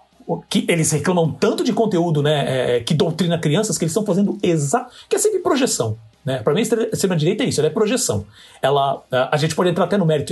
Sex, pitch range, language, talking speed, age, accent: male, 145-205 Hz, Portuguese, 210 wpm, 40-59, Brazilian